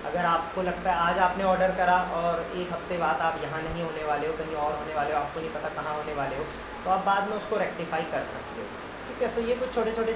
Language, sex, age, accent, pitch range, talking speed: Hindi, male, 20-39, native, 165-200 Hz, 280 wpm